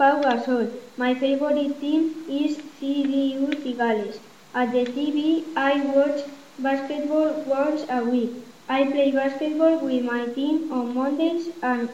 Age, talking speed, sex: 20-39, 130 wpm, female